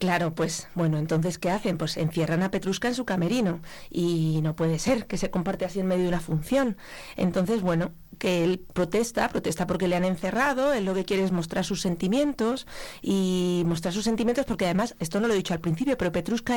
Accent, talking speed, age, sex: Spanish, 215 wpm, 40-59, female